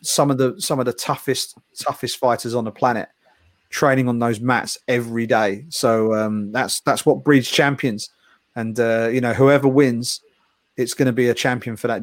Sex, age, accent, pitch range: male, 40-59, British, 115-140 Hz